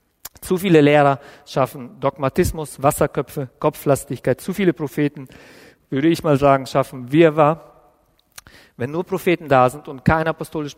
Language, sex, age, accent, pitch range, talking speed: German, male, 50-69, German, 135-165 Hz, 140 wpm